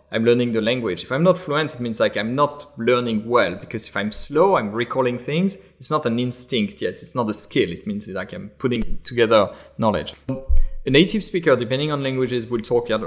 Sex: male